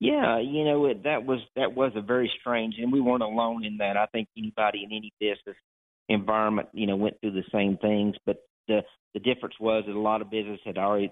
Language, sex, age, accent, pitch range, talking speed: English, male, 40-59, American, 105-135 Hz, 230 wpm